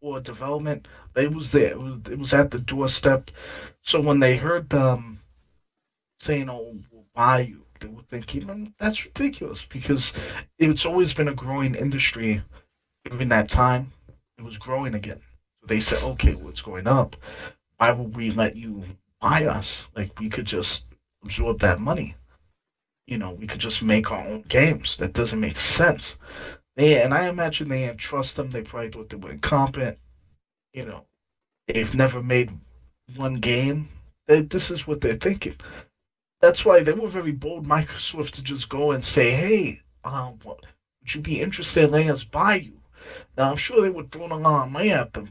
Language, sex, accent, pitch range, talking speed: English, male, American, 100-145 Hz, 180 wpm